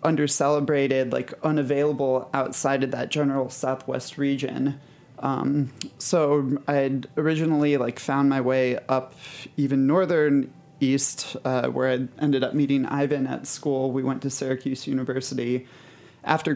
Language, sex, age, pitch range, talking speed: English, male, 30-49, 130-145 Hz, 130 wpm